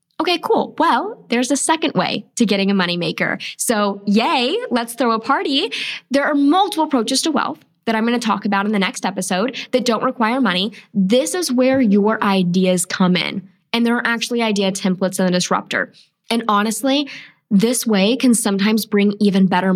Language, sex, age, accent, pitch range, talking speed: English, female, 10-29, American, 200-265 Hz, 190 wpm